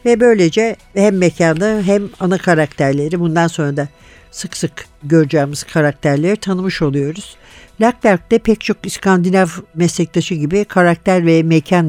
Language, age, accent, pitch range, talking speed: Turkish, 60-79, native, 155-200 Hz, 125 wpm